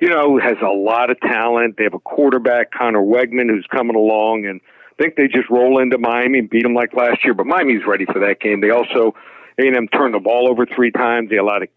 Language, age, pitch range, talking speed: English, 60-79, 115-130 Hz, 255 wpm